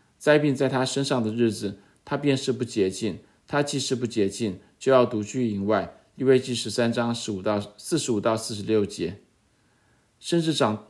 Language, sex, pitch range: Chinese, male, 105-130 Hz